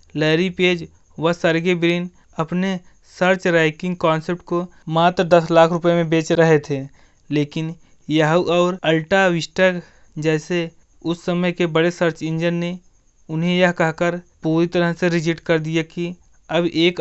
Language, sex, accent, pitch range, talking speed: Hindi, male, native, 160-175 Hz, 150 wpm